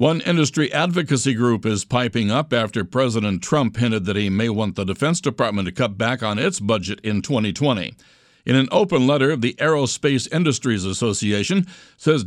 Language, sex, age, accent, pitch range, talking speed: English, male, 60-79, American, 105-140 Hz, 170 wpm